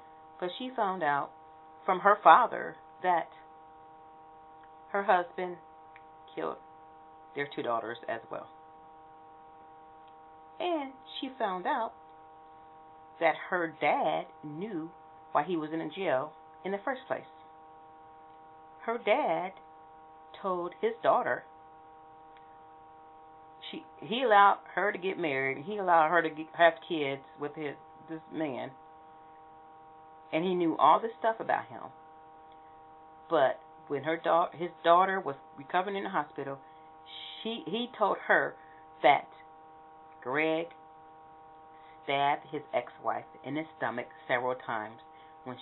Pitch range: 155-160 Hz